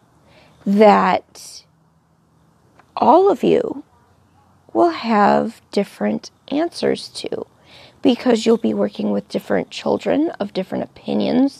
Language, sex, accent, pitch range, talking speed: English, female, American, 200-275 Hz, 100 wpm